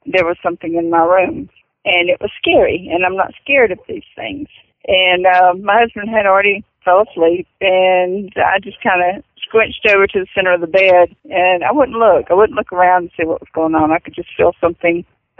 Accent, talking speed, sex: American, 220 wpm, female